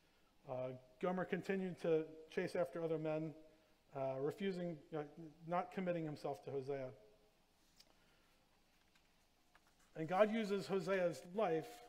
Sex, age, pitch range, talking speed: male, 40-59, 140-180 Hz, 105 wpm